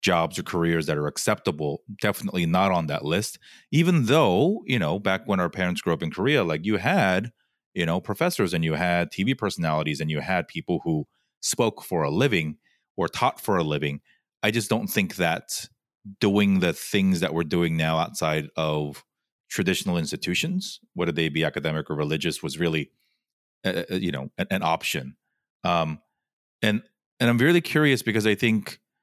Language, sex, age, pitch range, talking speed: English, male, 30-49, 85-120 Hz, 180 wpm